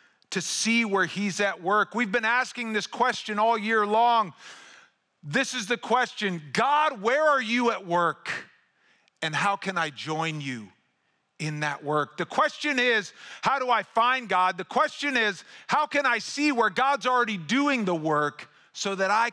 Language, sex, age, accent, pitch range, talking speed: English, male, 40-59, American, 170-250 Hz, 175 wpm